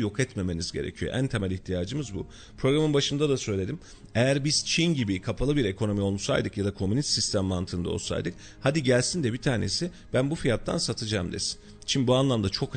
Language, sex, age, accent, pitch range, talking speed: Turkish, male, 40-59, native, 105-150 Hz, 185 wpm